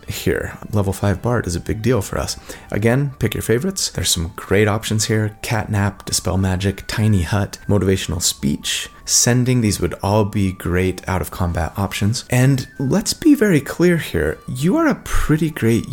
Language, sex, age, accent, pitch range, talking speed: English, male, 30-49, American, 90-120 Hz, 175 wpm